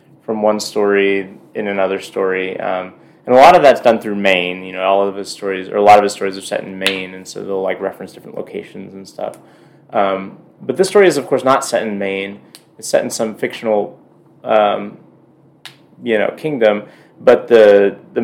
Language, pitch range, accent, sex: English, 95-120 Hz, American, male